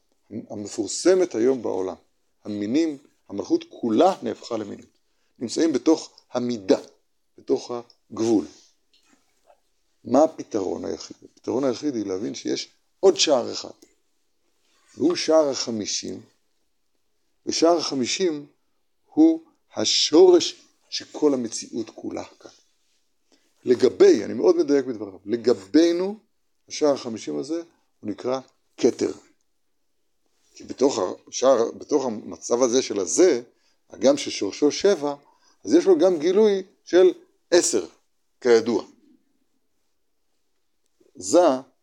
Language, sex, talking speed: Hebrew, male, 95 wpm